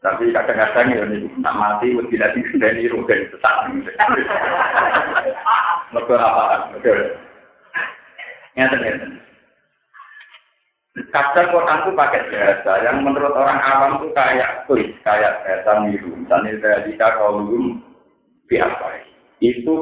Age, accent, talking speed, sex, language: 50-69, native, 120 wpm, male, Indonesian